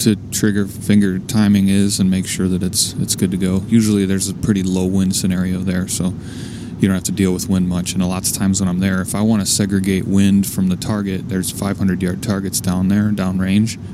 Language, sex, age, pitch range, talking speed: English, male, 30-49, 95-110 Hz, 235 wpm